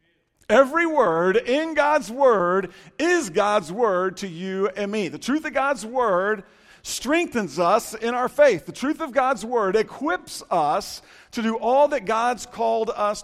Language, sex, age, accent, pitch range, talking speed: English, male, 50-69, American, 210-275 Hz, 165 wpm